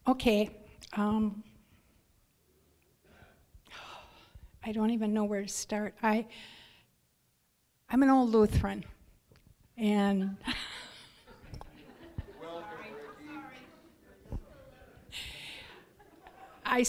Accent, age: American, 60-79